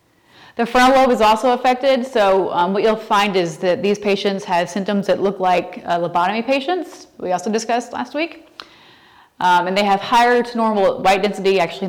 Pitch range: 180-220 Hz